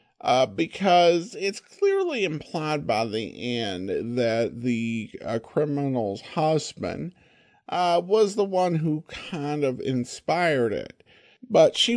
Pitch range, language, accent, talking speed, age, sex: 110-165 Hz, English, American, 120 wpm, 50-69, male